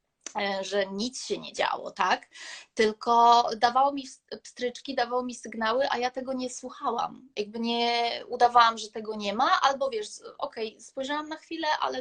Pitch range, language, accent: 210-260 Hz, Polish, native